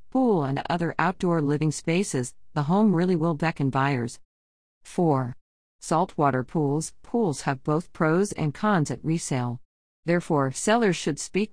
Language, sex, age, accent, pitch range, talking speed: English, female, 50-69, American, 140-205 Hz, 140 wpm